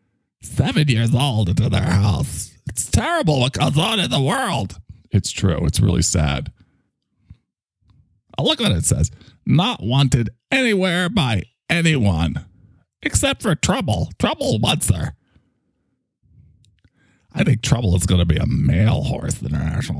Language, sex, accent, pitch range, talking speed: English, male, American, 100-165 Hz, 135 wpm